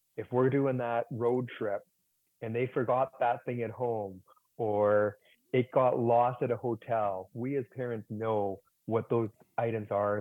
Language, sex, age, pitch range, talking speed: English, male, 30-49, 110-125 Hz, 165 wpm